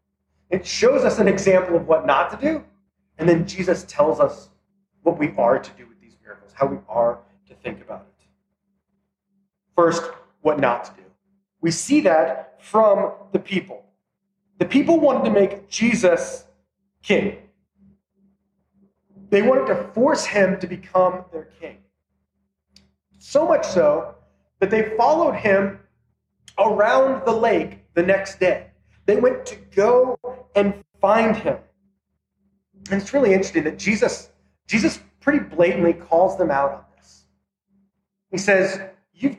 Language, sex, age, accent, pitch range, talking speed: English, male, 30-49, American, 180-225 Hz, 145 wpm